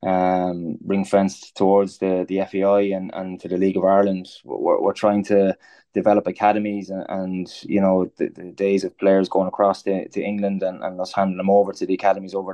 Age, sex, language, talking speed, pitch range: 20-39, male, English, 210 wpm, 95-100 Hz